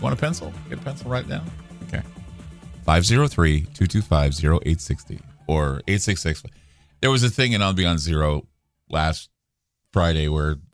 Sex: male